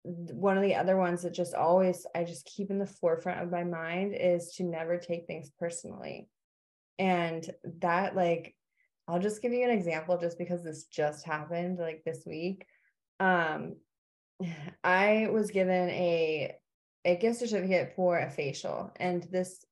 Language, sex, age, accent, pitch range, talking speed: English, female, 20-39, American, 170-195 Hz, 160 wpm